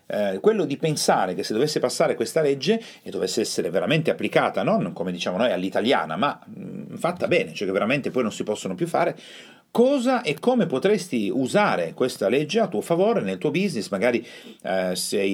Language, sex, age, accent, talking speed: Italian, male, 40-59, native, 190 wpm